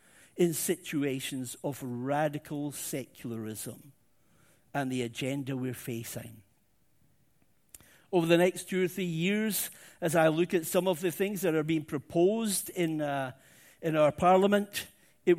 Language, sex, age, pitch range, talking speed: English, male, 50-69, 140-180 Hz, 135 wpm